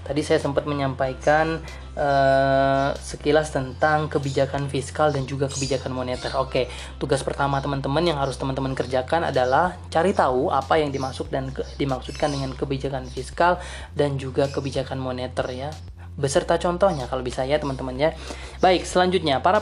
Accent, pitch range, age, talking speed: native, 130-155 Hz, 20-39, 150 wpm